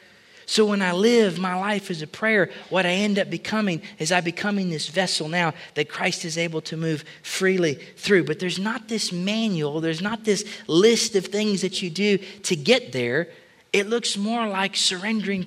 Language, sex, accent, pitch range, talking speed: English, male, American, 145-195 Hz, 195 wpm